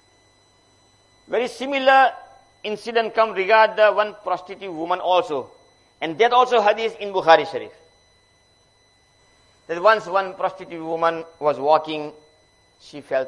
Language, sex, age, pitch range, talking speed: English, male, 50-69, 110-185 Hz, 115 wpm